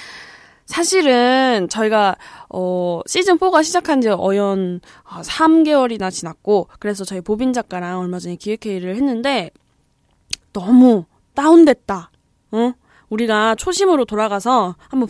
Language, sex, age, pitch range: Korean, female, 20-39, 200-295 Hz